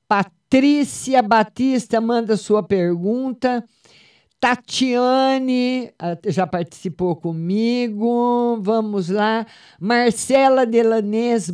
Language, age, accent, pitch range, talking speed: Portuguese, 50-69, Brazilian, 175-230 Hz, 70 wpm